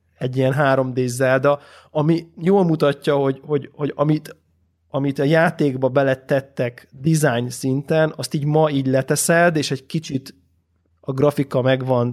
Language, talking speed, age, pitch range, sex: Hungarian, 135 wpm, 20-39, 125-150 Hz, male